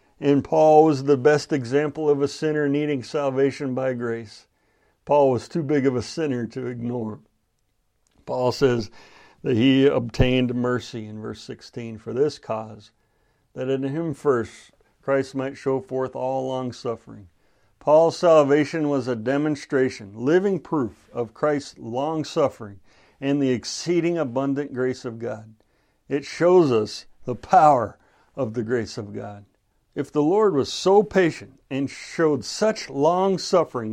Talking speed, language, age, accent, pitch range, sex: 145 wpm, English, 60-79, American, 125-165 Hz, male